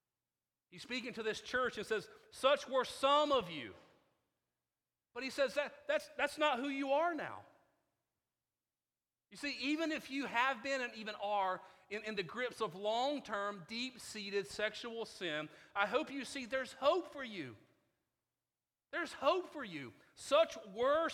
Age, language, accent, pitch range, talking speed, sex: 40-59, English, American, 190-265 Hz, 155 wpm, male